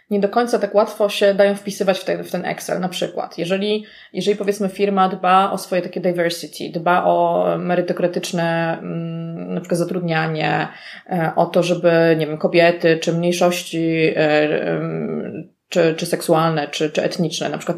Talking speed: 150 wpm